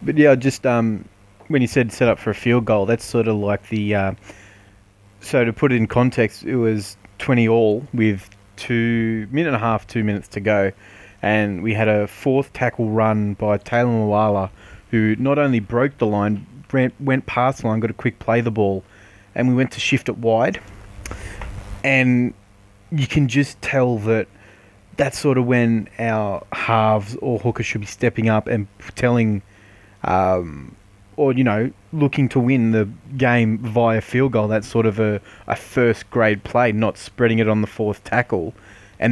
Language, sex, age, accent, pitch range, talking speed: English, male, 20-39, Australian, 100-120 Hz, 185 wpm